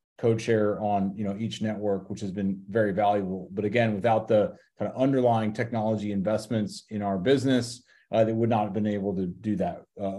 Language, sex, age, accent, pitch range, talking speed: English, male, 30-49, American, 110-120 Hz, 200 wpm